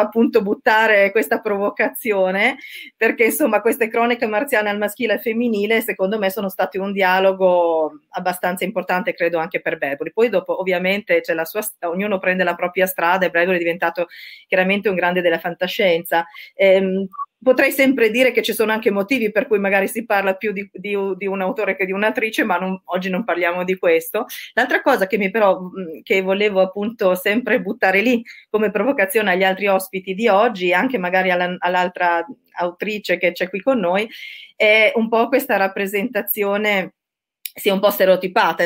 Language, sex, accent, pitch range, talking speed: Italian, female, native, 185-225 Hz, 175 wpm